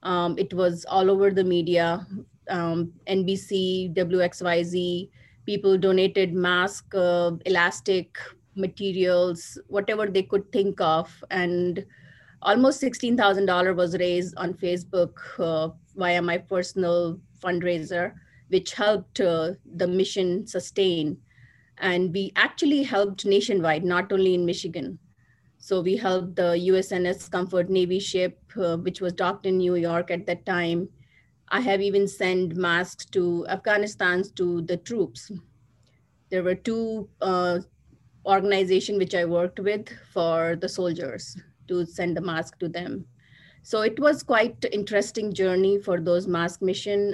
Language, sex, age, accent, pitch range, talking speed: English, female, 30-49, Indian, 175-195 Hz, 130 wpm